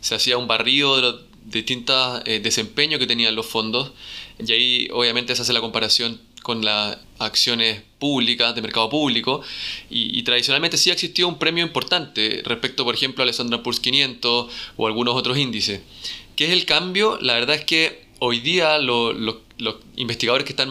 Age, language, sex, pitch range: 20-39, Spanish, male, 115-150 Hz